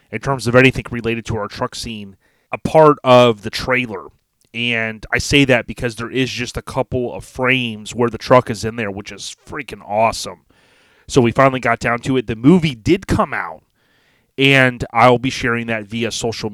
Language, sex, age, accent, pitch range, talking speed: English, male, 30-49, American, 110-130 Hz, 200 wpm